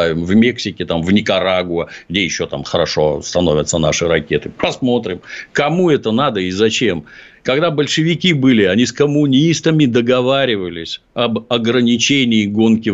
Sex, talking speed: male, 125 wpm